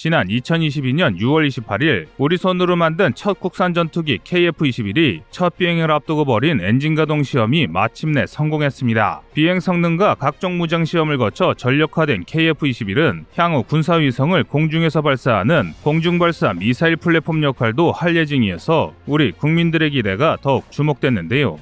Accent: native